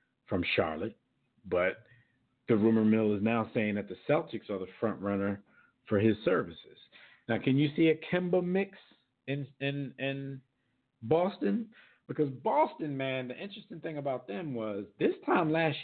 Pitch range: 105-135 Hz